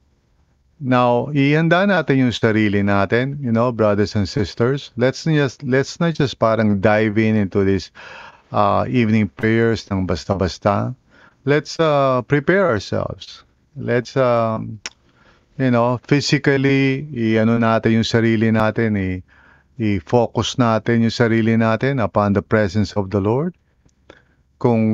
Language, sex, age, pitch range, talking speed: English, male, 50-69, 100-125 Hz, 130 wpm